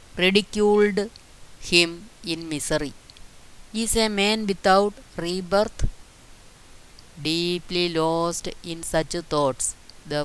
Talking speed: 90 wpm